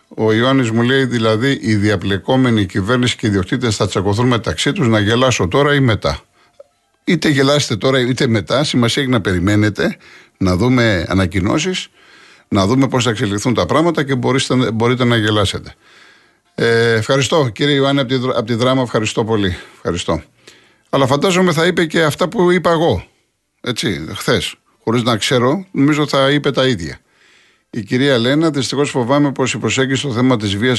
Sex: male